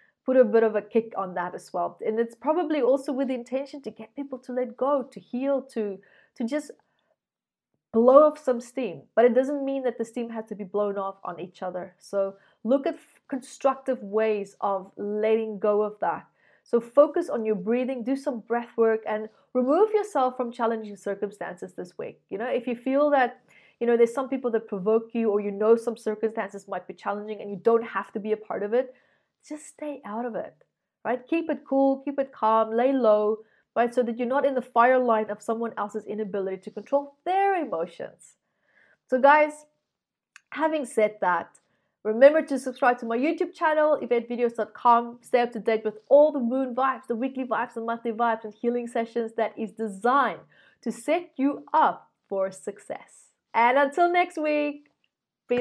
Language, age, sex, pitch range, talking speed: English, 30-49, female, 215-270 Hz, 195 wpm